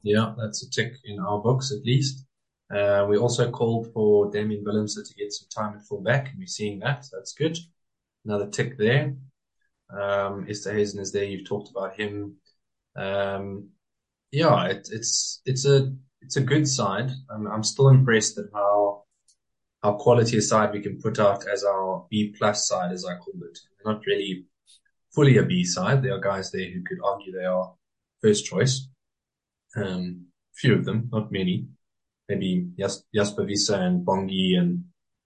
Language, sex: English, male